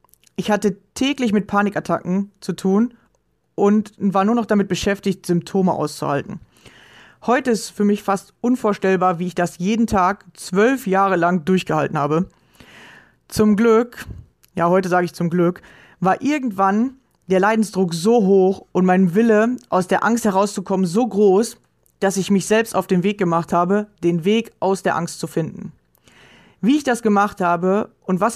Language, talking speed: German, 165 wpm